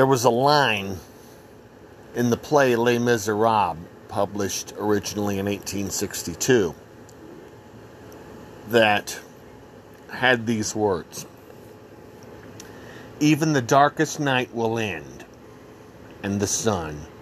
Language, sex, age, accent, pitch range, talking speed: English, male, 50-69, American, 100-125 Hz, 90 wpm